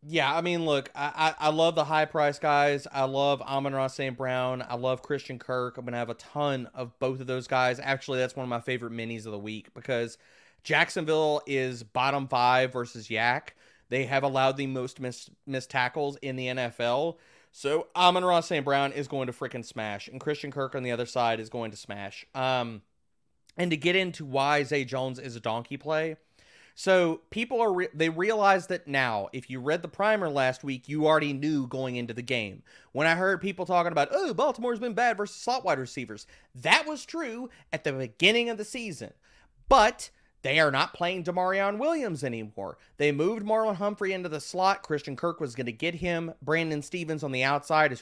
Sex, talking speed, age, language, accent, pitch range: male, 210 wpm, 30-49, English, American, 130-165 Hz